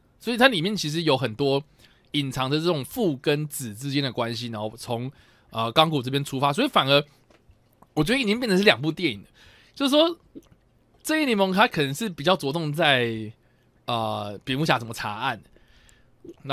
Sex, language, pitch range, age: male, Chinese, 120-155 Hz, 20-39